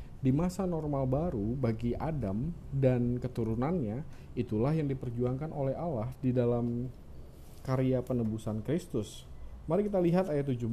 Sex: male